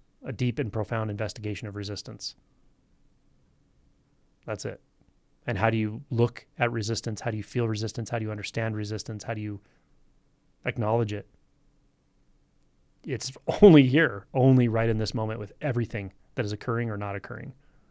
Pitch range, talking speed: 105-125 Hz, 160 wpm